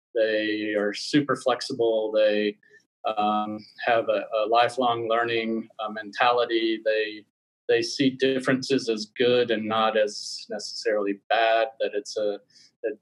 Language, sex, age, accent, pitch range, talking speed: English, male, 30-49, American, 110-135 Hz, 130 wpm